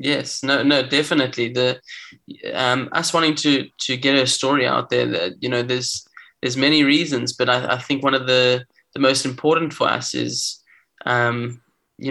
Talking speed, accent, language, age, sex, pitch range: 185 wpm, Australian, English, 20-39, male, 125-140 Hz